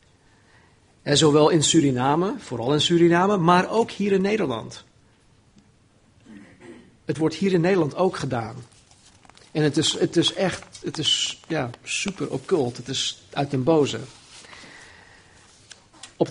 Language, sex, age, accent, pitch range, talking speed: Dutch, male, 50-69, Dutch, 120-160 Hz, 130 wpm